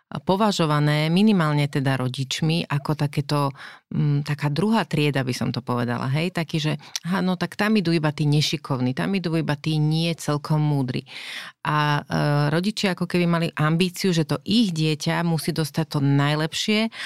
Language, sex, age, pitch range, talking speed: Slovak, female, 30-49, 145-175 Hz, 160 wpm